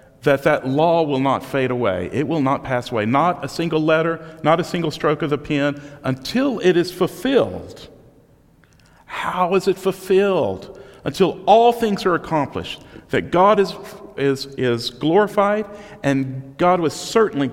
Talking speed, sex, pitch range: 160 wpm, male, 120-175 Hz